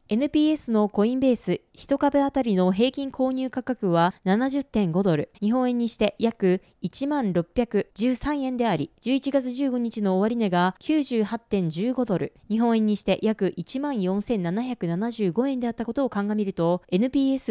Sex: female